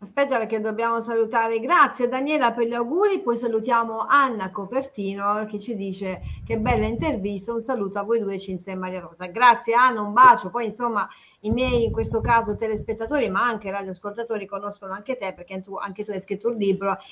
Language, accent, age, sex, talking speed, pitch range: Italian, native, 40-59, female, 190 wpm, 195-250 Hz